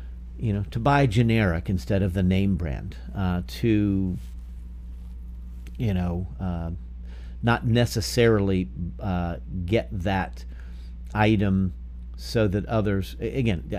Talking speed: 110 wpm